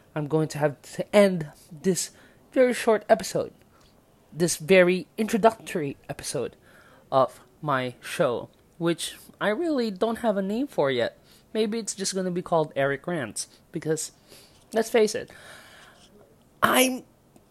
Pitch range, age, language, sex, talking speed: 150-215 Hz, 20-39, English, male, 135 wpm